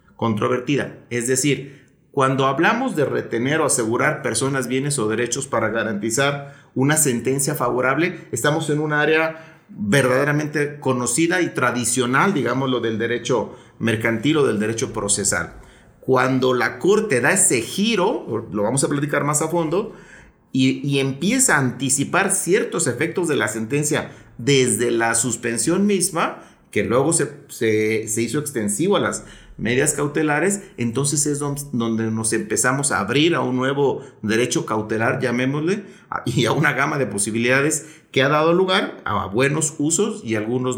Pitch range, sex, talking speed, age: 120-150 Hz, male, 150 wpm, 40-59